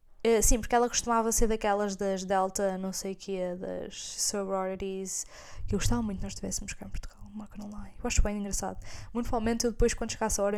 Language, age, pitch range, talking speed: Portuguese, 10-29, 175-220 Hz, 220 wpm